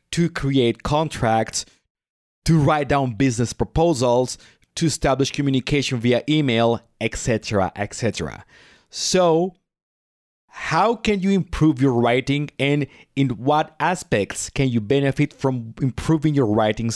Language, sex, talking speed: English, male, 115 wpm